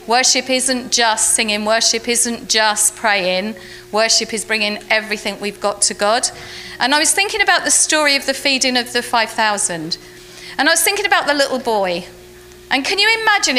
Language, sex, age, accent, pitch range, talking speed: English, female, 40-59, British, 210-285 Hz, 180 wpm